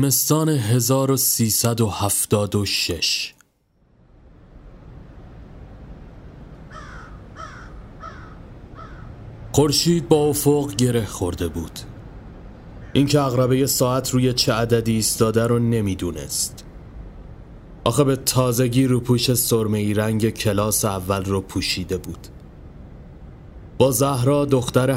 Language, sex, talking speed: Persian, male, 70 wpm